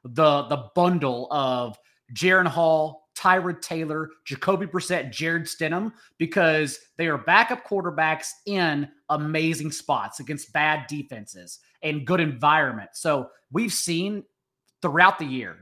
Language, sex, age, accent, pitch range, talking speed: English, male, 30-49, American, 150-190 Hz, 125 wpm